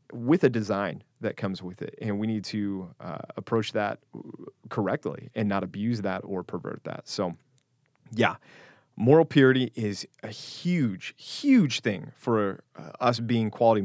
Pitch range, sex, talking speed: 100-125 Hz, male, 155 wpm